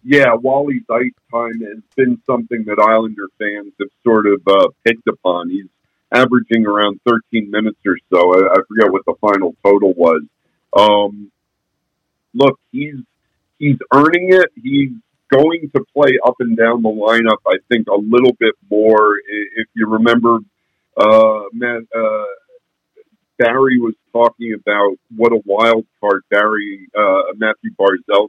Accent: American